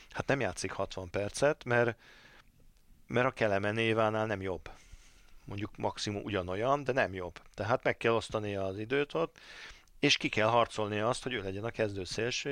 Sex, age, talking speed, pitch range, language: male, 40-59, 175 wpm, 95-115 Hz, Hungarian